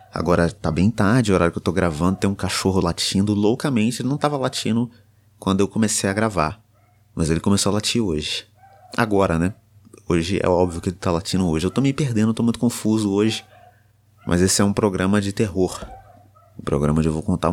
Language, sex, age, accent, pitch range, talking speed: Portuguese, male, 20-39, Brazilian, 85-110 Hz, 210 wpm